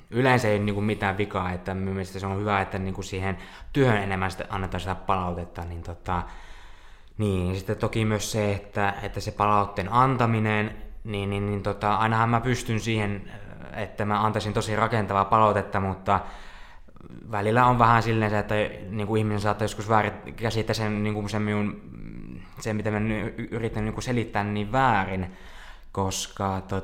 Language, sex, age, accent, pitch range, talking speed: Finnish, male, 20-39, native, 95-110 Hz, 125 wpm